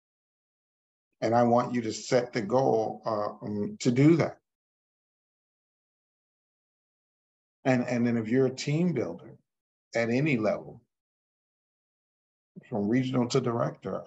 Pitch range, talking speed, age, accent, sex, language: 110-125 Hz, 120 wpm, 50-69, American, male, English